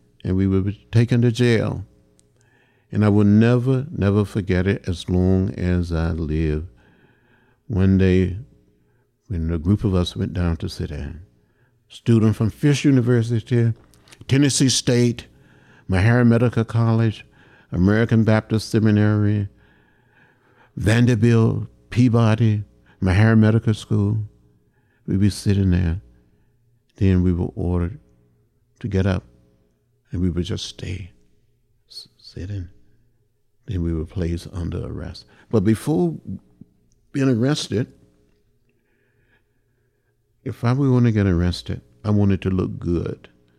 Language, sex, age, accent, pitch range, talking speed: English, male, 60-79, American, 90-120 Hz, 120 wpm